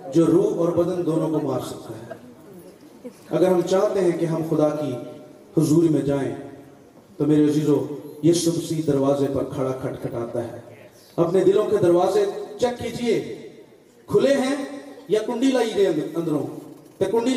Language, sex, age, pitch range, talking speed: Urdu, male, 40-59, 165-255 Hz, 145 wpm